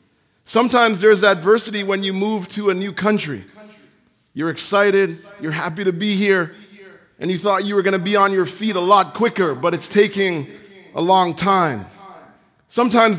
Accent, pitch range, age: American, 180-215 Hz, 30-49